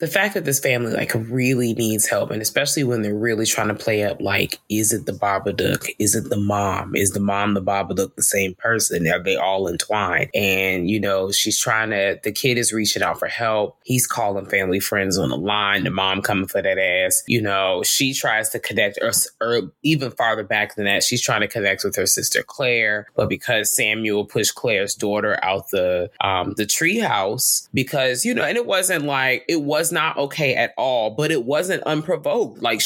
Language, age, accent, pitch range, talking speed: English, 20-39, American, 105-160 Hz, 215 wpm